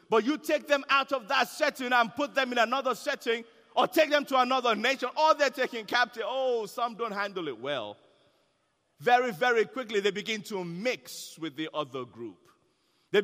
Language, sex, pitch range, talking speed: English, male, 195-260 Hz, 190 wpm